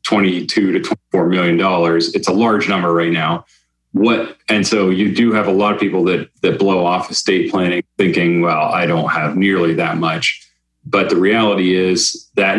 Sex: male